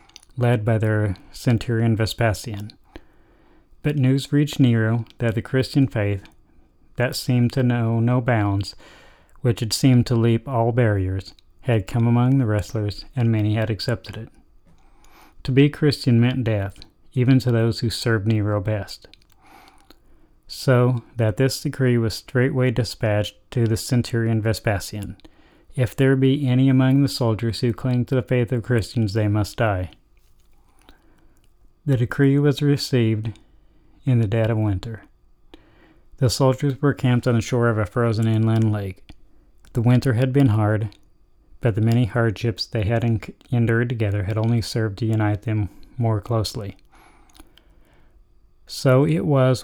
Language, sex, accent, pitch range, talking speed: English, male, American, 105-125 Hz, 145 wpm